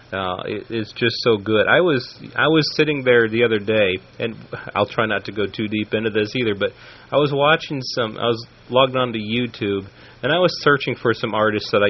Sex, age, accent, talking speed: male, 30-49, American, 220 wpm